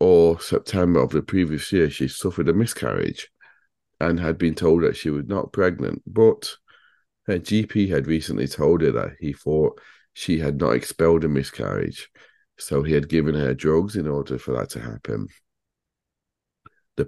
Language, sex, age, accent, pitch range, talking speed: English, male, 40-59, British, 65-80 Hz, 170 wpm